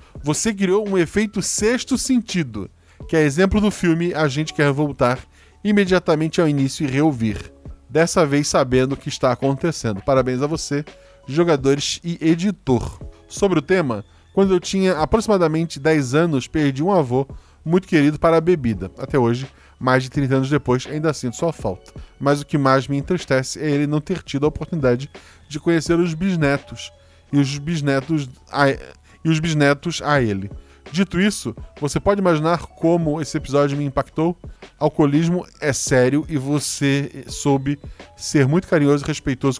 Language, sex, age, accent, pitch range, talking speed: Portuguese, male, 20-39, Brazilian, 130-165 Hz, 160 wpm